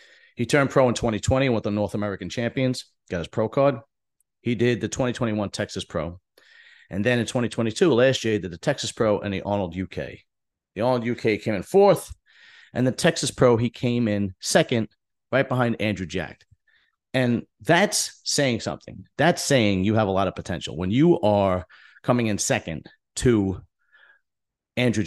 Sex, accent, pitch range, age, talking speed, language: male, American, 95-125 Hz, 40-59, 175 wpm, English